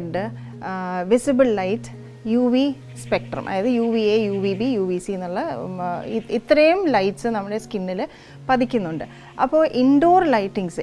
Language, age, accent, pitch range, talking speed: Malayalam, 30-49, native, 185-235 Hz, 135 wpm